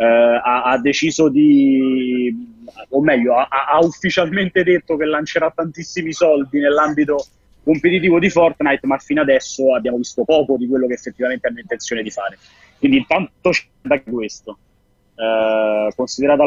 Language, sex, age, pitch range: Italian, male, 30-49, 130-170 Hz